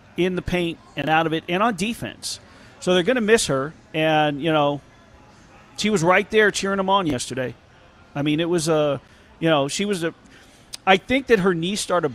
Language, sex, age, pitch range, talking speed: English, male, 40-59, 140-175 Hz, 210 wpm